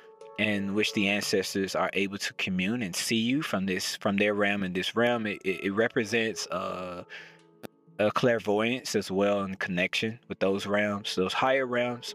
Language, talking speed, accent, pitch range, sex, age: English, 180 wpm, American, 95-125 Hz, male, 20-39